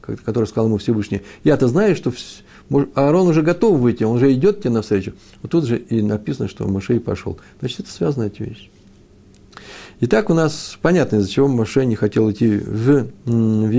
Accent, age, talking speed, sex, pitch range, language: native, 60-79, 185 wpm, male, 100-120 Hz, Russian